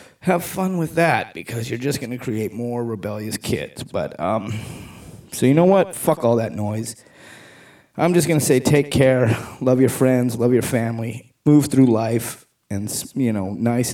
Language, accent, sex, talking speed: English, American, male, 185 wpm